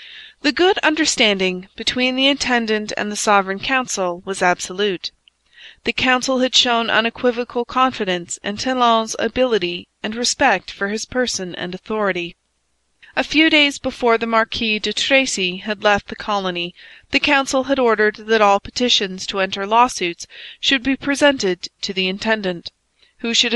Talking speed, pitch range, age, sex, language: 150 wpm, 190-245 Hz, 30-49, female, English